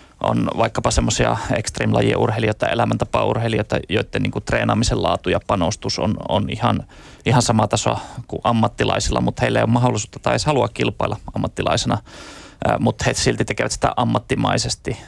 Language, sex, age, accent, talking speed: Finnish, male, 30-49, native, 140 wpm